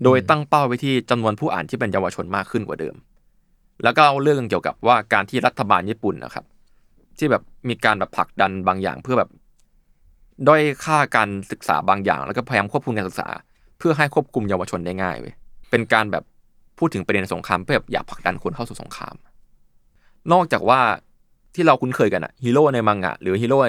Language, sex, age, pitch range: Thai, male, 20-39, 95-135 Hz